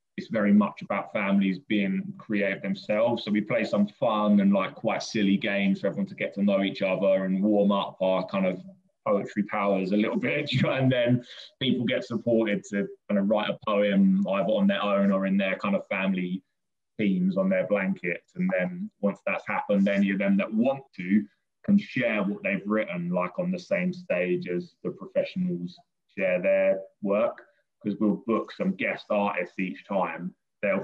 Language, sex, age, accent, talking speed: English, male, 20-39, British, 190 wpm